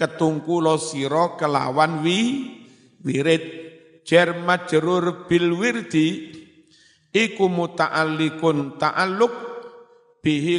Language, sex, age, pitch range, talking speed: Indonesian, male, 50-69, 150-180 Hz, 60 wpm